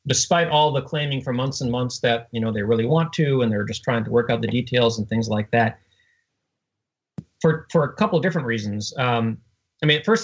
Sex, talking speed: male, 230 wpm